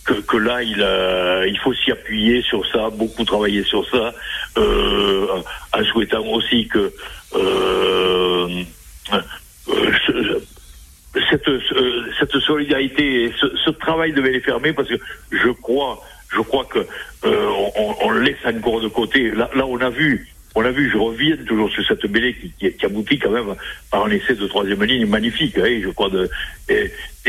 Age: 60-79